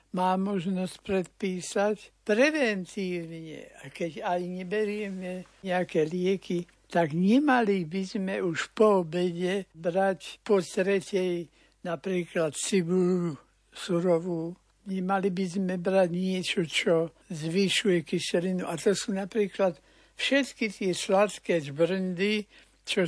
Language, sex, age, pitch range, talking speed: Slovak, male, 60-79, 170-200 Hz, 105 wpm